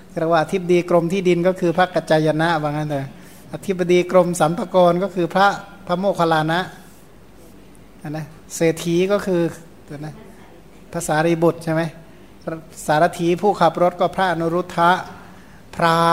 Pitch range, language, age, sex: 155-180 Hz, Thai, 60-79, male